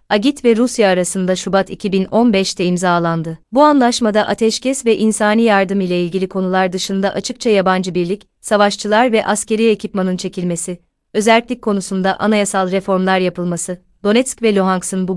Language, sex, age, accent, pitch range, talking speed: Turkish, female, 30-49, native, 185-215 Hz, 135 wpm